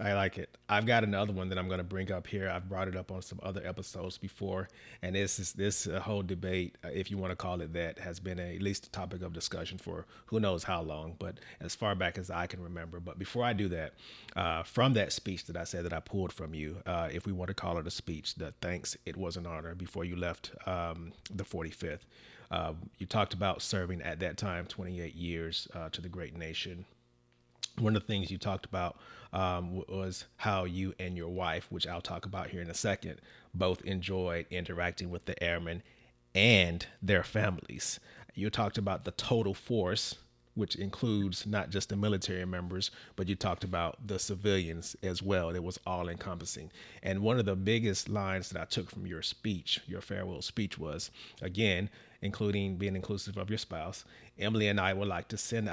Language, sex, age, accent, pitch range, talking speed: English, male, 30-49, American, 90-100 Hz, 210 wpm